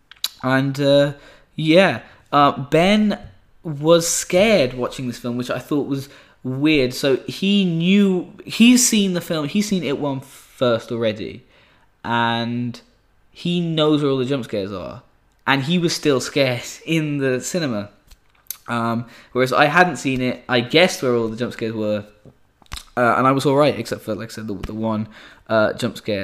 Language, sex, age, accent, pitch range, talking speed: English, male, 10-29, British, 115-145 Hz, 170 wpm